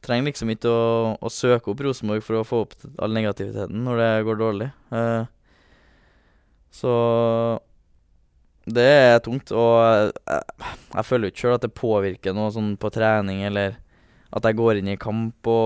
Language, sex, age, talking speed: English, male, 20-39, 165 wpm